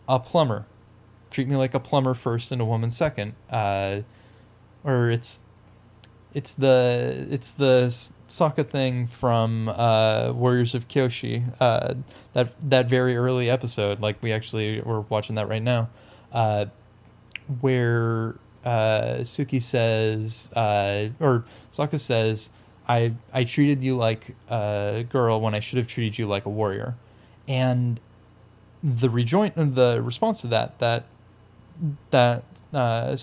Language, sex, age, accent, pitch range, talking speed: English, male, 10-29, American, 110-130 Hz, 135 wpm